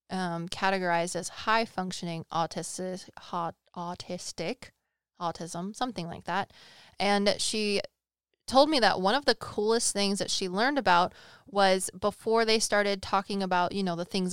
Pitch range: 180-215 Hz